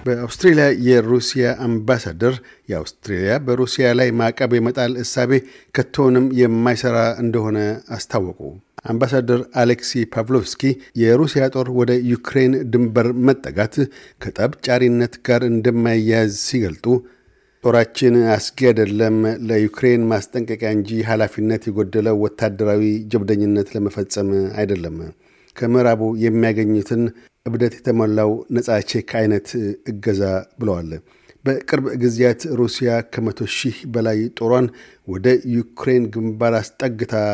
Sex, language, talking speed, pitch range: male, Amharic, 90 wpm, 110-125 Hz